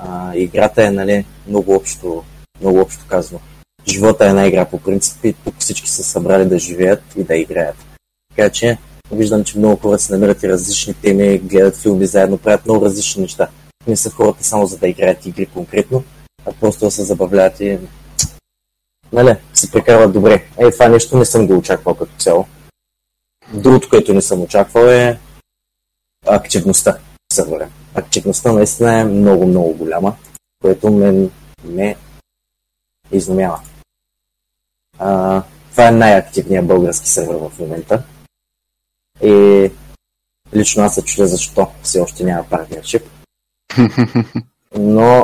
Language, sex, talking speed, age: Bulgarian, male, 140 wpm, 20-39